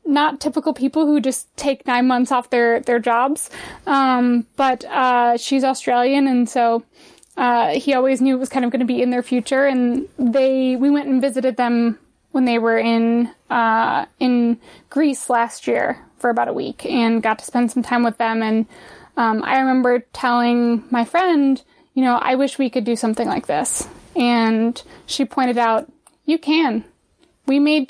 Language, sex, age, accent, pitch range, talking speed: English, female, 20-39, American, 235-275 Hz, 185 wpm